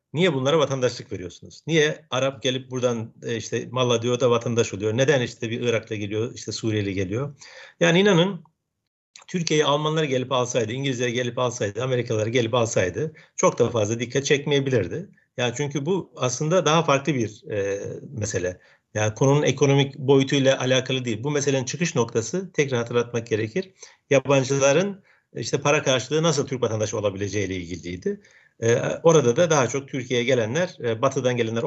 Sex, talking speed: male, 150 wpm